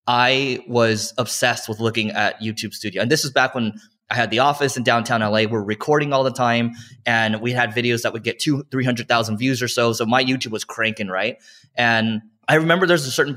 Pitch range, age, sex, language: 110-130 Hz, 20-39, male, English